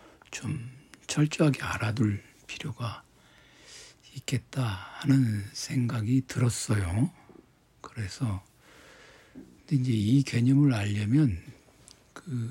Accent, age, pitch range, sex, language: native, 60-79, 105-135 Hz, male, Korean